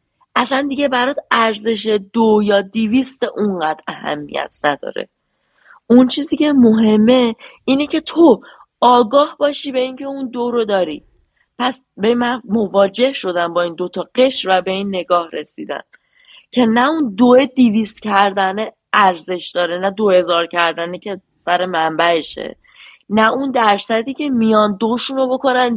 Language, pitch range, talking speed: Persian, 195-250 Hz, 145 wpm